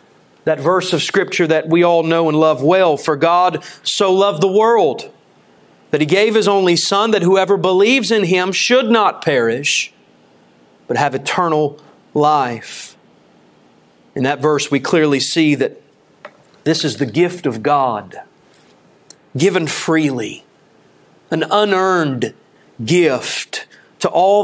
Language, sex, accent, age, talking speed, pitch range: English, male, American, 40-59, 135 wpm, 155-220 Hz